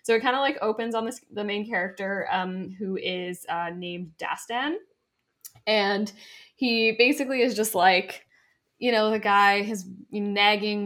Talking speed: 155 wpm